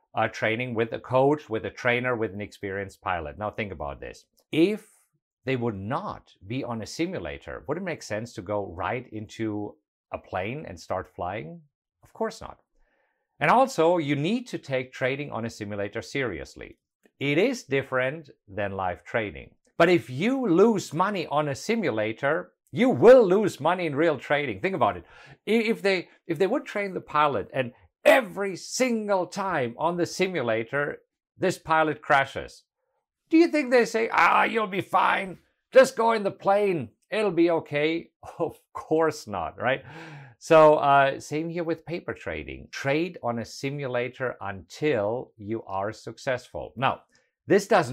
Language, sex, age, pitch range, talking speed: English, male, 50-69, 115-170 Hz, 165 wpm